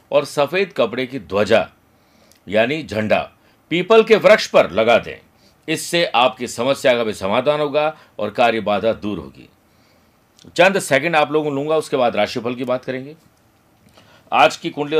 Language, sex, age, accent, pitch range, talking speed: Hindi, male, 50-69, native, 120-150 Hz, 155 wpm